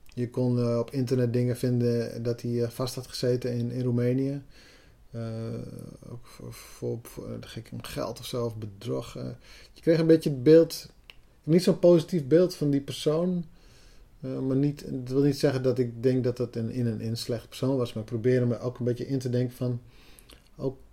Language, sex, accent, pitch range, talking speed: Dutch, male, Dutch, 115-135 Hz, 200 wpm